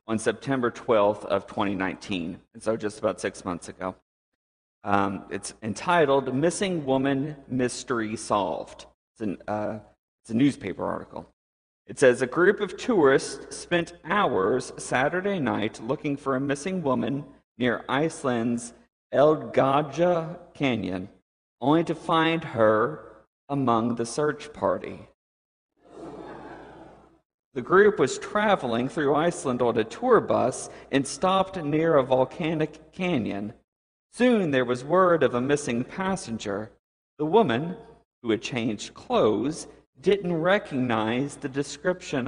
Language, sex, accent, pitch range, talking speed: English, male, American, 120-175 Hz, 125 wpm